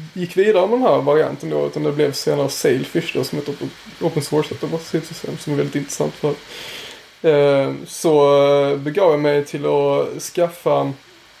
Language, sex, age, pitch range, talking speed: Swedish, male, 20-39, 145-180 Hz, 145 wpm